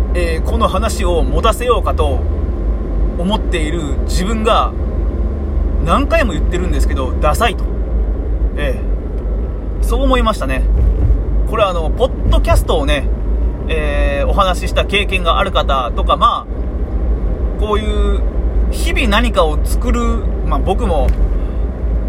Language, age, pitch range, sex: Japanese, 30-49, 65-75 Hz, male